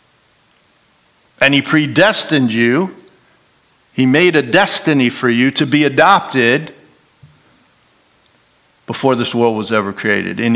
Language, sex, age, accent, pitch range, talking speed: English, male, 50-69, American, 115-155 Hz, 115 wpm